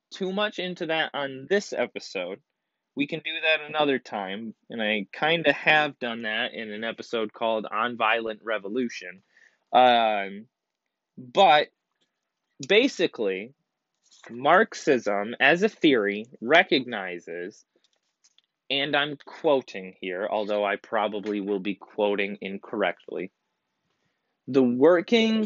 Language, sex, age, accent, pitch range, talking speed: English, male, 20-39, American, 110-160 Hz, 115 wpm